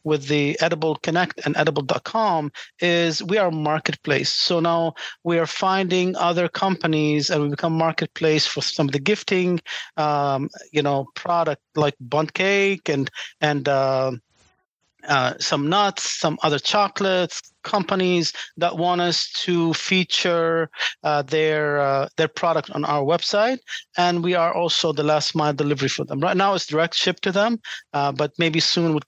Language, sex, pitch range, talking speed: English, male, 150-180 Hz, 165 wpm